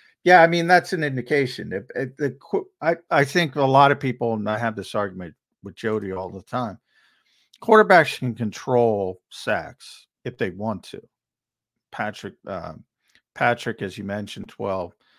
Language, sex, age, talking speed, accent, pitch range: English, male, 50-69, 160 wpm, American, 105-135 Hz